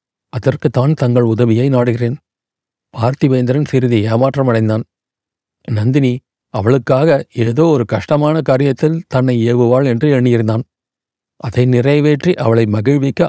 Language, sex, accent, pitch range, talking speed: Tamil, male, native, 120-145 Hz, 100 wpm